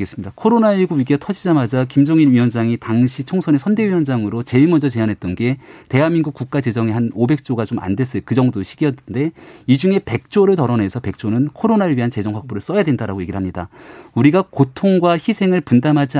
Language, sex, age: Korean, male, 40-59